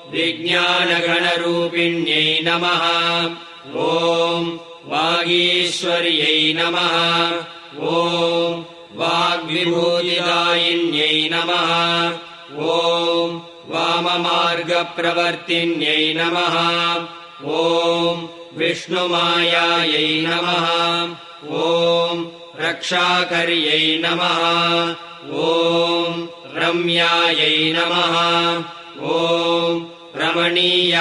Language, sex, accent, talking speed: English, male, Indian, 35 wpm